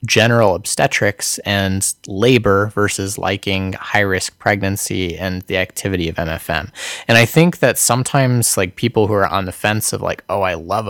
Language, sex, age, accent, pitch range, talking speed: English, male, 20-39, American, 100-125 Hz, 165 wpm